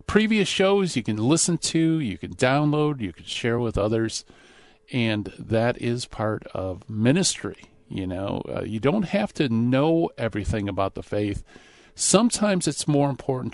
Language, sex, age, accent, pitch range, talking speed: English, male, 50-69, American, 105-140 Hz, 160 wpm